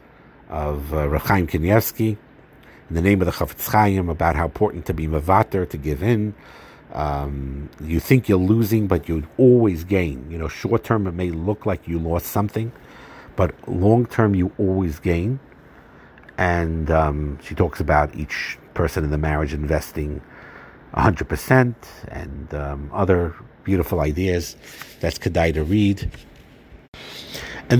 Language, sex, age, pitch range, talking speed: English, male, 50-69, 80-105 Hz, 145 wpm